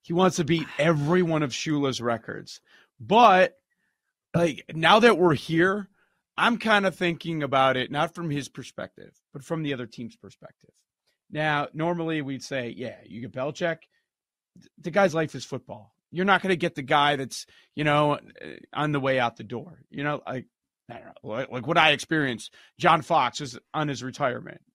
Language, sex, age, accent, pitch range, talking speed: English, male, 30-49, American, 140-180 Hz, 185 wpm